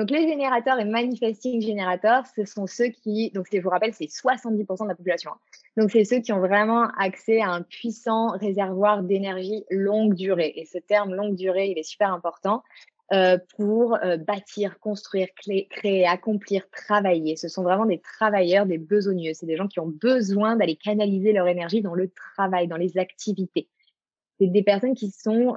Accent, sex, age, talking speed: French, female, 20-39, 180 wpm